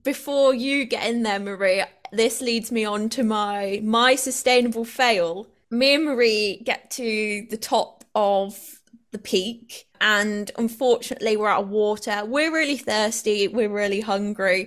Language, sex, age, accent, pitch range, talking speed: English, female, 20-39, British, 205-260 Hz, 150 wpm